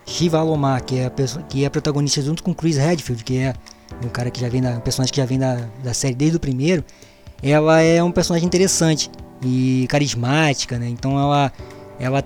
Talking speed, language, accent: 215 wpm, Portuguese, Brazilian